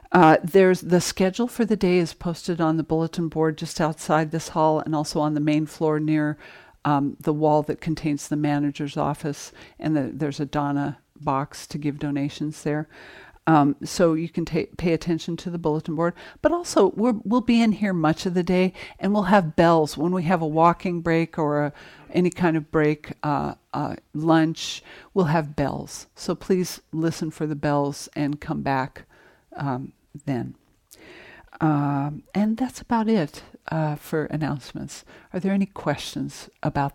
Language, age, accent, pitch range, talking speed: English, 60-79, American, 150-175 Hz, 180 wpm